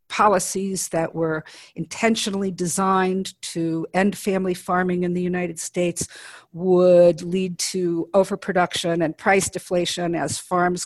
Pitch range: 170-195 Hz